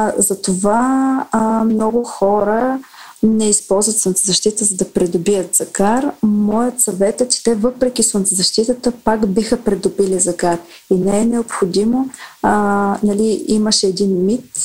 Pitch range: 190-225 Hz